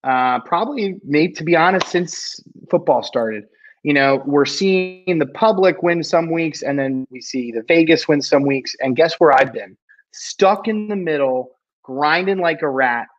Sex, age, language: male, 30-49, English